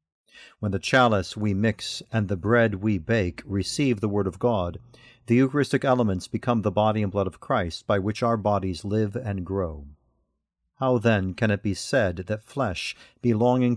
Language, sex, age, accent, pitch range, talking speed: English, male, 50-69, American, 95-120 Hz, 180 wpm